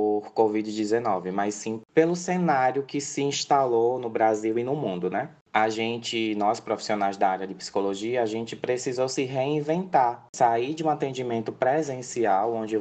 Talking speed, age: 155 wpm, 20-39